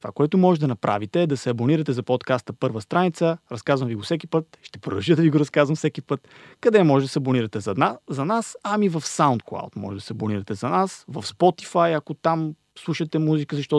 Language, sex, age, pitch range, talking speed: Bulgarian, male, 30-49, 130-165 Hz, 220 wpm